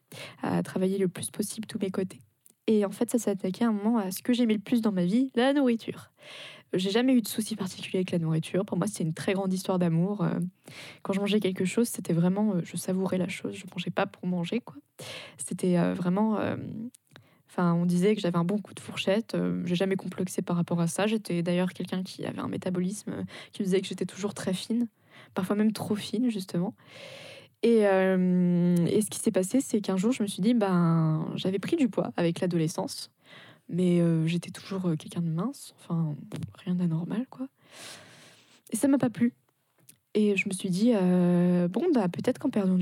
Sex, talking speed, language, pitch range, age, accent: female, 210 wpm, French, 180-220 Hz, 20-39, French